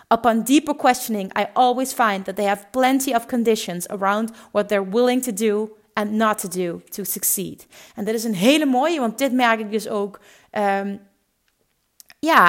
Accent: Dutch